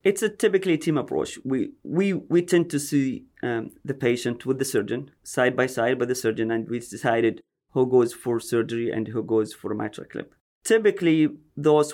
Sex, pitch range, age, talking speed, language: male, 115-135 Hz, 30-49, 190 wpm, English